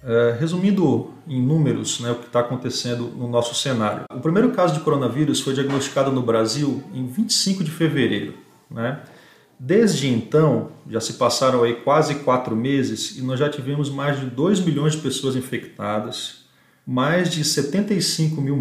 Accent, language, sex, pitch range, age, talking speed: Brazilian, Portuguese, male, 125-160 Hz, 40-59, 160 wpm